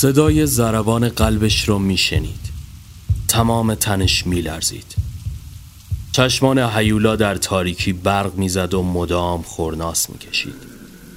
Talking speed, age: 95 wpm, 30-49